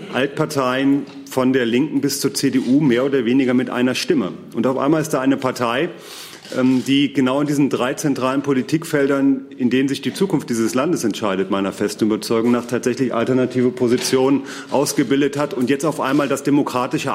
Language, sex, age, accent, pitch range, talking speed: German, male, 40-59, German, 115-140 Hz, 175 wpm